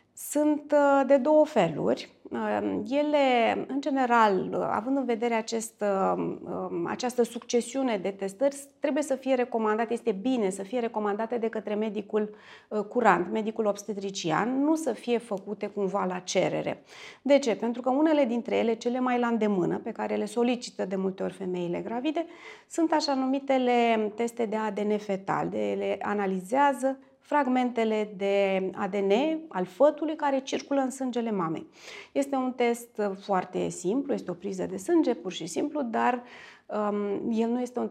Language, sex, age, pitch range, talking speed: Romanian, female, 30-49, 200-265 Hz, 150 wpm